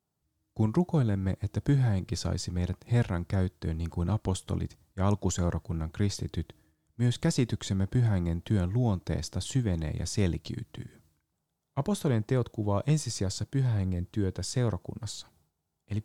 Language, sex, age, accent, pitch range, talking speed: Finnish, male, 30-49, native, 90-115 Hz, 110 wpm